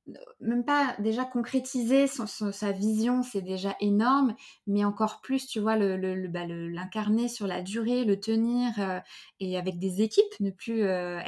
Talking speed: 185 wpm